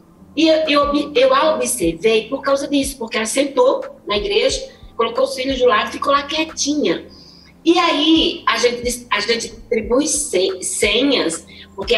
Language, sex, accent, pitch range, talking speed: Portuguese, female, Brazilian, 205-290 Hz, 155 wpm